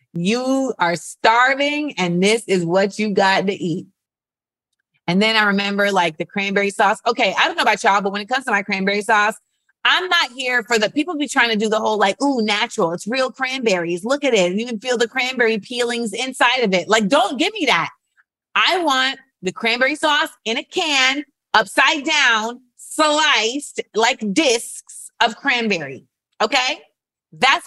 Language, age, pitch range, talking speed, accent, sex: English, 30-49, 190-260 Hz, 185 wpm, American, female